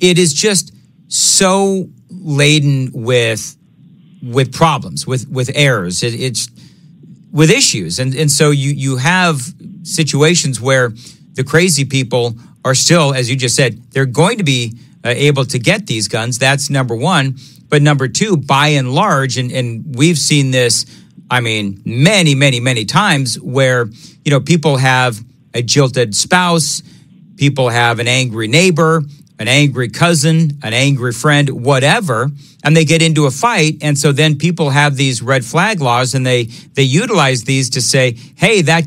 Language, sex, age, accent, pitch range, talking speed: English, male, 40-59, American, 130-160 Hz, 160 wpm